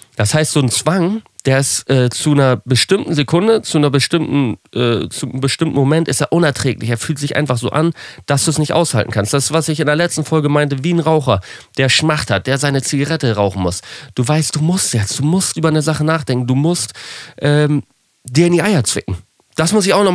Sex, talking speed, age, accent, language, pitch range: male, 235 wpm, 30-49, German, German, 110-155 Hz